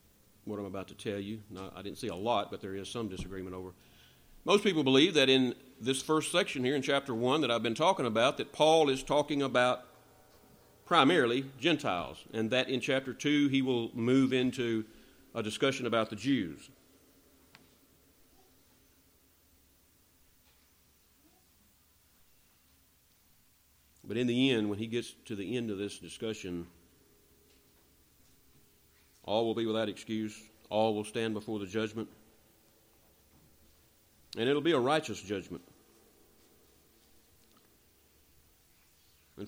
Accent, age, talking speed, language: American, 50-69, 130 wpm, English